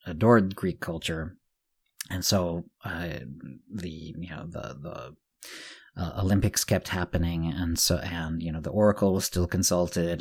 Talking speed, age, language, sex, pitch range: 145 wpm, 40-59, English, male, 85-95 Hz